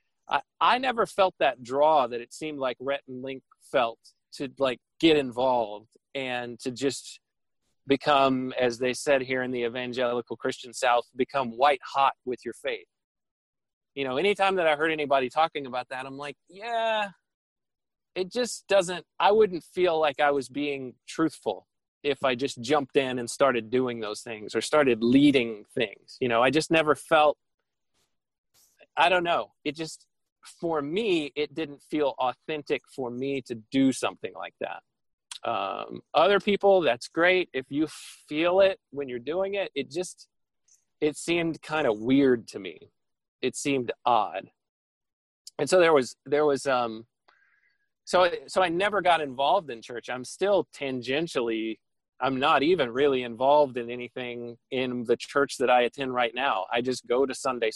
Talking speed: 175 wpm